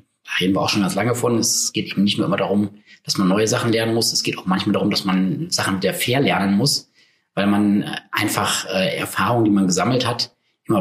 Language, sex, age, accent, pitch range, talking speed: German, male, 30-49, German, 105-145 Hz, 240 wpm